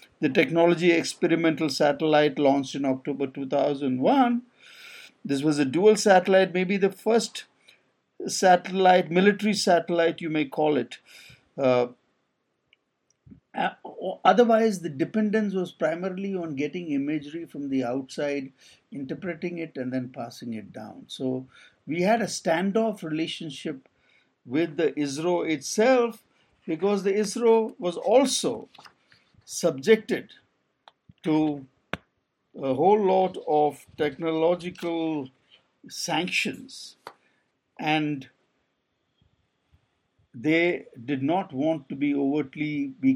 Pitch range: 145-210 Hz